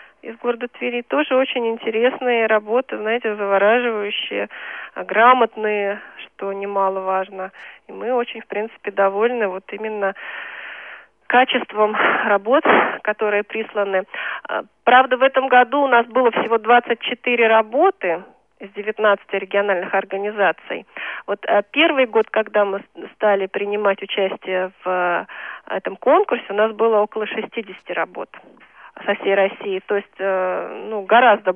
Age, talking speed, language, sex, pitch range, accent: 30-49, 120 wpm, Russian, female, 200-245 Hz, native